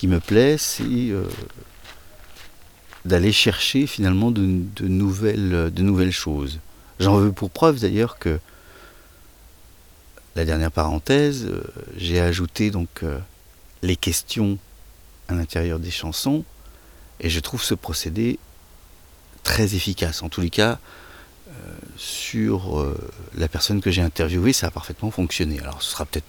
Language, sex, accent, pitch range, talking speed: French, male, French, 80-110 Hz, 130 wpm